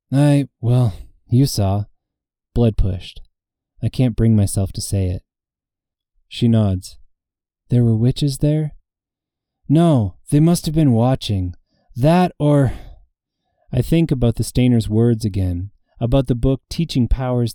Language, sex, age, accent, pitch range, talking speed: English, male, 20-39, American, 95-130 Hz, 135 wpm